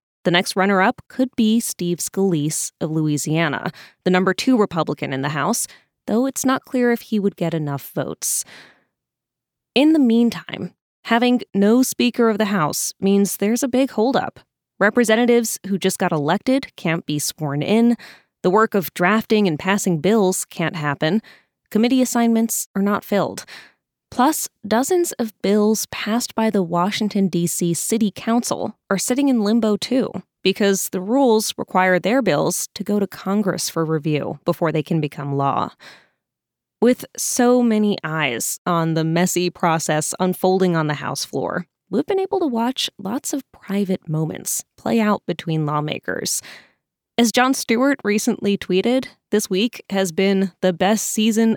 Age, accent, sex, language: 20-39, American, female, English